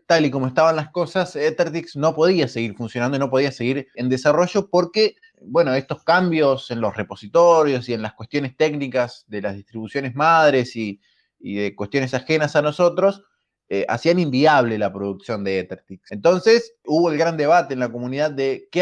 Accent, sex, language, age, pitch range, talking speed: Argentinian, male, Spanish, 20-39, 110-150 Hz, 180 wpm